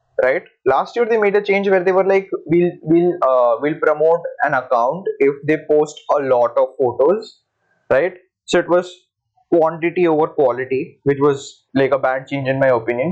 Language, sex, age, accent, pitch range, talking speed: English, male, 20-39, Indian, 150-210 Hz, 190 wpm